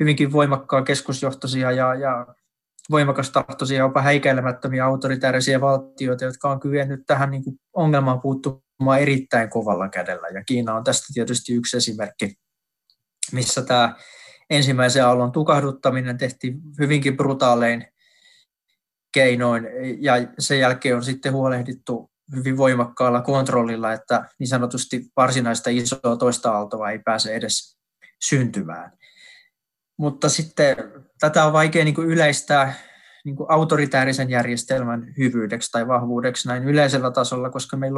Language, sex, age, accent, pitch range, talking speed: Finnish, male, 20-39, native, 125-145 Hz, 115 wpm